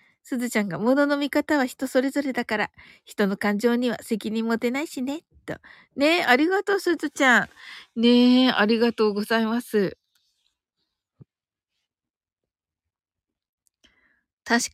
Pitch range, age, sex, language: 205-275 Hz, 60-79, female, Japanese